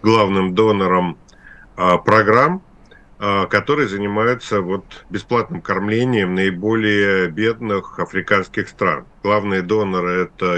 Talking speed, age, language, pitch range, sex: 95 wpm, 50-69, Russian, 90-105 Hz, male